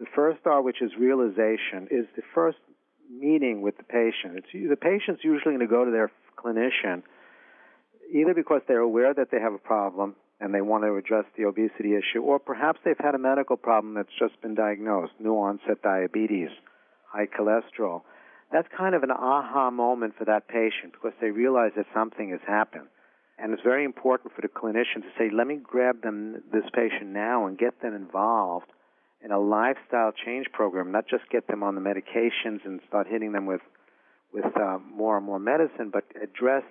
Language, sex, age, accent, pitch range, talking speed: English, male, 50-69, American, 105-130 Hz, 190 wpm